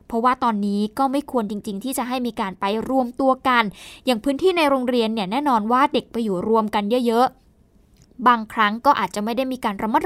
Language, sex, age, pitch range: Thai, female, 20-39, 225-290 Hz